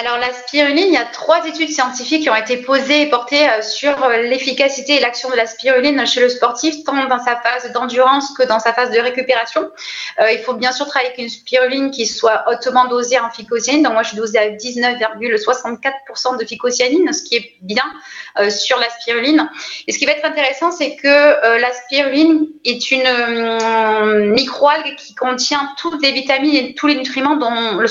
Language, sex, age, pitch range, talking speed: French, female, 20-39, 235-285 Hz, 195 wpm